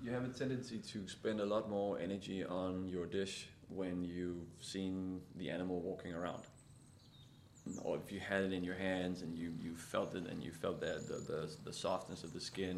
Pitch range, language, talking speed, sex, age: 95-115 Hz, English, 205 wpm, male, 20-39